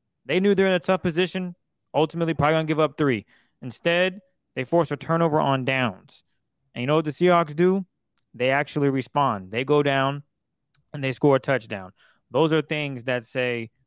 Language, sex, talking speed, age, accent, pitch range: English, male, 190 wpm, 20-39, American, 125-155 Hz